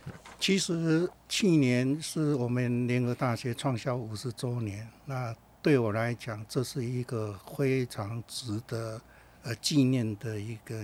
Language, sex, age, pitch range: Chinese, male, 60-79, 110-130 Hz